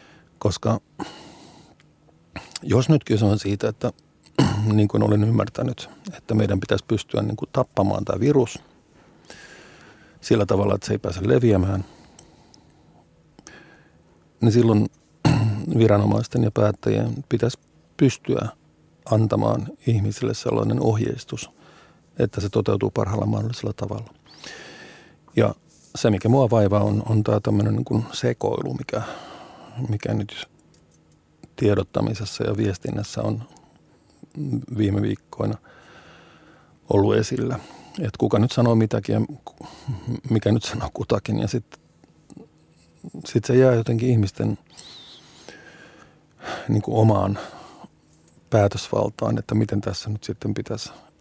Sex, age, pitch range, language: male, 50-69, 100-120 Hz, Finnish